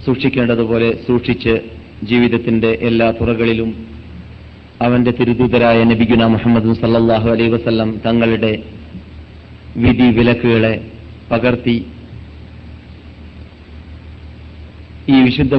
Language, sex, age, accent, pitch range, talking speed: Malayalam, male, 40-59, native, 95-120 Hz, 65 wpm